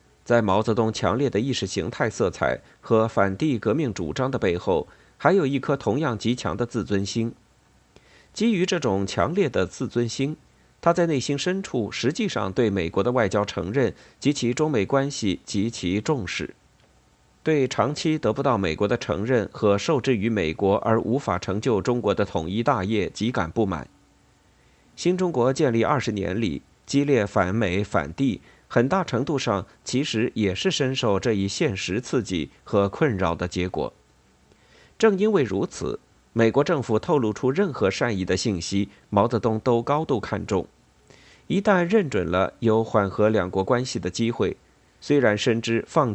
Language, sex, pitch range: Chinese, male, 100-135 Hz